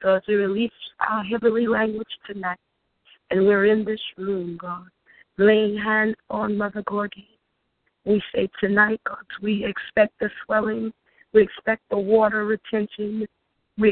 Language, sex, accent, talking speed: English, female, American, 140 wpm